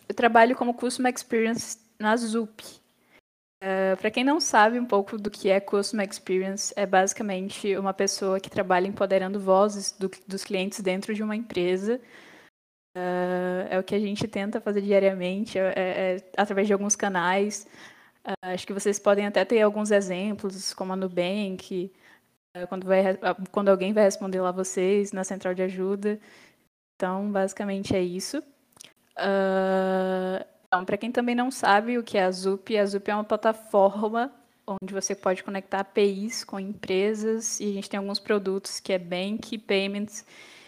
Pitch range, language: 190-215 Hz, Portuguese